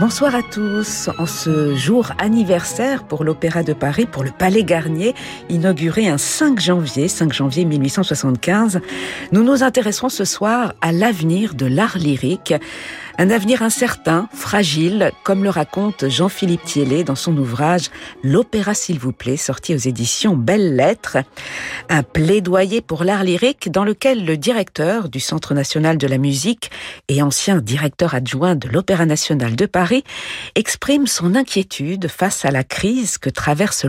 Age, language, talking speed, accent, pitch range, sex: 50-69, French, 155 wpm, French, 150-210 Hz, female